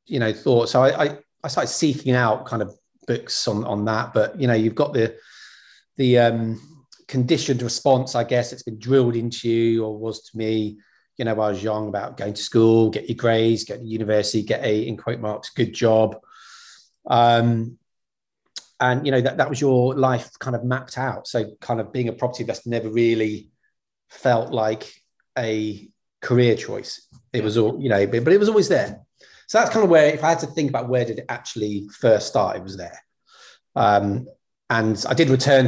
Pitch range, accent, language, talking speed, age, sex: 110-130 Hz, British, English, 205 wpm, 30-49, male